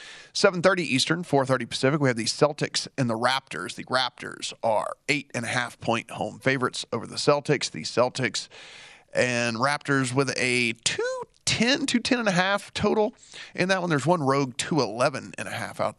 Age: 40-59